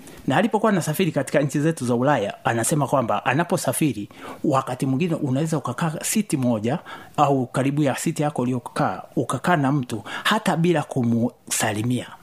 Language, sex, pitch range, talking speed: Swahili, male, 120-160 Hz, 140 wpm